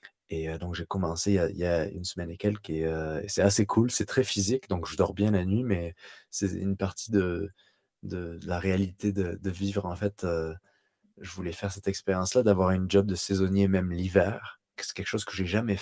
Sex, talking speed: male, 215 wpm